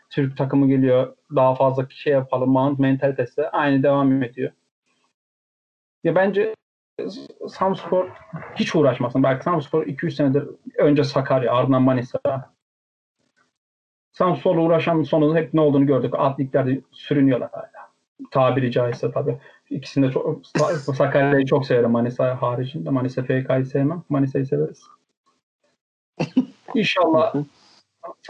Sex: male